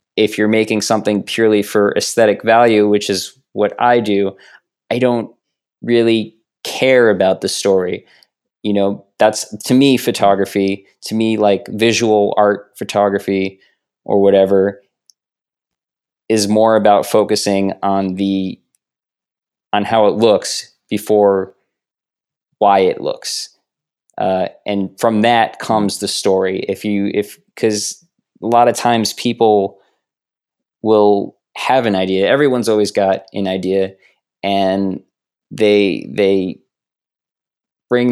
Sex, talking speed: male, 120 wpm